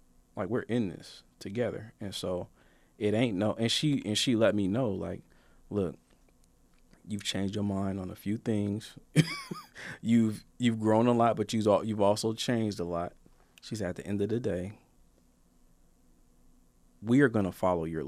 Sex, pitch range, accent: male, 90-120 Hz, American